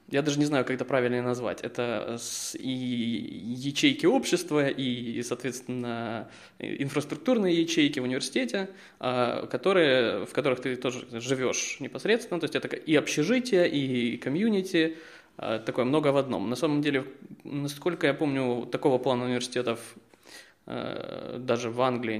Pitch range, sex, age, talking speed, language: 120-145 Hz, male, 20-39, 130 wpm, Ukrainian